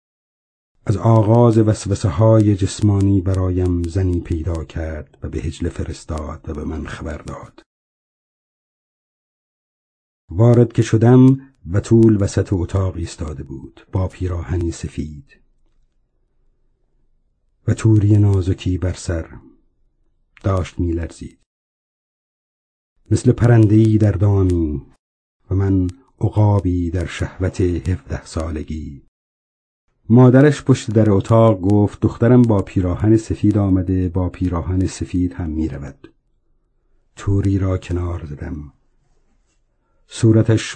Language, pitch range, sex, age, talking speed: Persian, 85-110 Hz, male, 50-69, 100 wpm